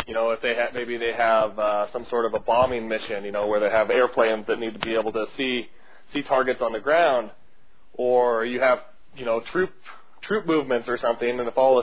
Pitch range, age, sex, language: 115-150 Hz, 20-39, male, English